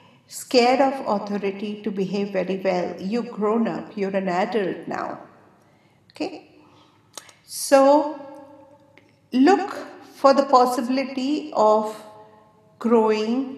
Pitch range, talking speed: 195-245 Hz, 95 wpm